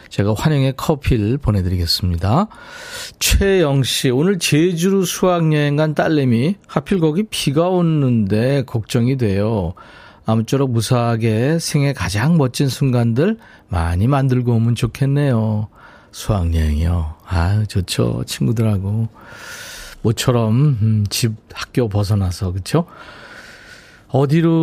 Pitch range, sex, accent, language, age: 105-150 Hz, male, native, Korean, 40-59